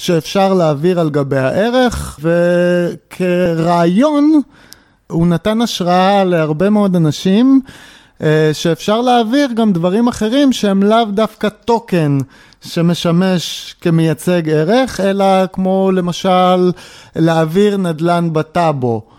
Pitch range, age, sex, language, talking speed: 160-205 Hz, 30-49, male, Hebrew, 95 wpm